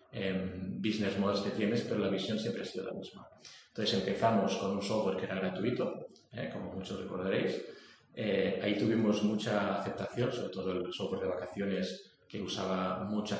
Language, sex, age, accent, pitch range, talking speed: Spanish, male, 30-49, Spanish, 100-115 Hz, 170 wpm